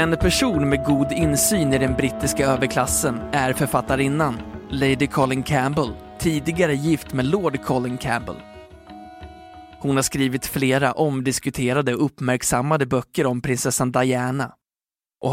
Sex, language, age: male, Swedish, 20-39